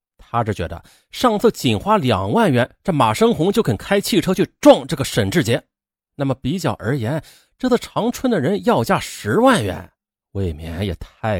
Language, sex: Chinese, male